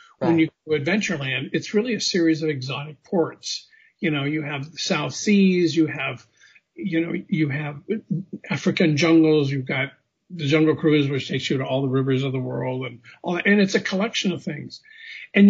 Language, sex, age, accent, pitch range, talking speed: English, male, 50-69, American, 145-185 Hz, 200 wpm